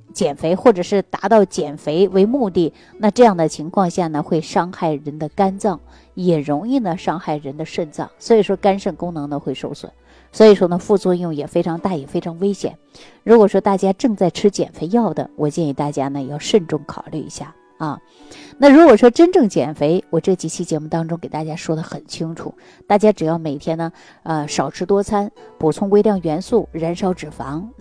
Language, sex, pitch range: Chinese, female, 155-205 Hz